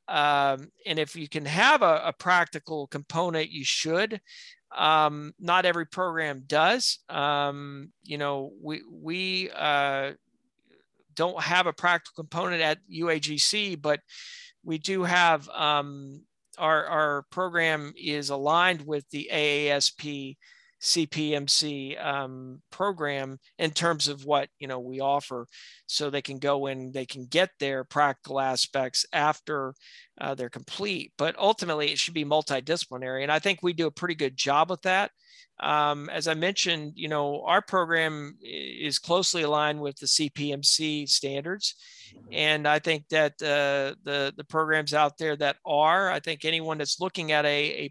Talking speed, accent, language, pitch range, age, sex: 150 wpm, American, English, 145-175 Hz, 40-59, male